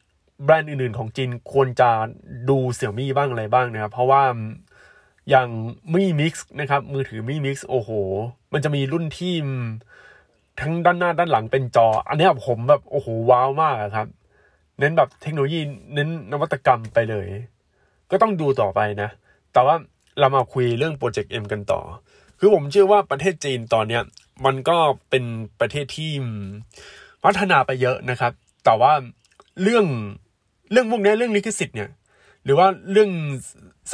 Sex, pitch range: male, 115-165 Hz